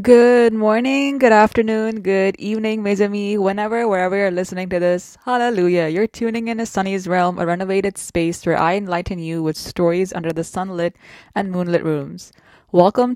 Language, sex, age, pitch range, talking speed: English, female, 20-39, 170-210 Hz, 170 wpm